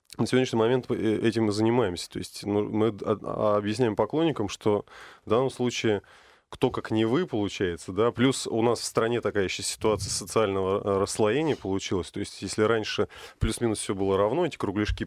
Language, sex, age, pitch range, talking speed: Russian, male, 20-39, 95-115 Hz, 165 wpm